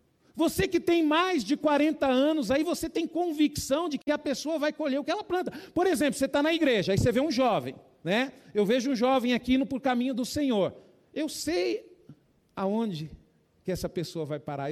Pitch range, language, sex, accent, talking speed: 200-290 Hz, Portuguese, male, Brazilian, 210 wpm